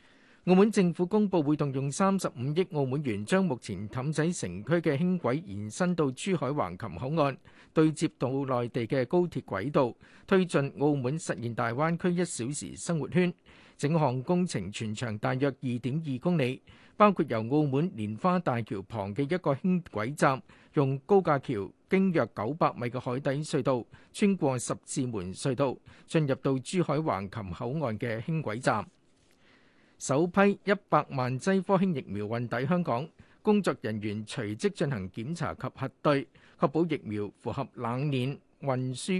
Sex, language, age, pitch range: male, Chinese, 50-69, 125-170 Hz